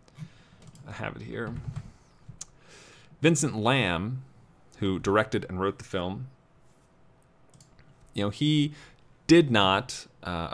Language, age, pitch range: English, 30-49, 95-125 Hz